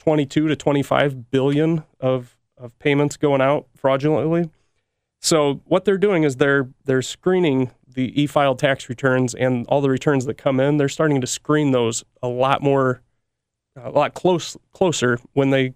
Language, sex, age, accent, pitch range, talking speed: English, male, 30-49, American, 125-150 Hz, 165 wpm